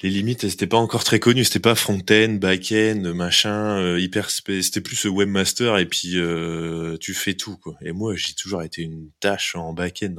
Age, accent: 20-39, French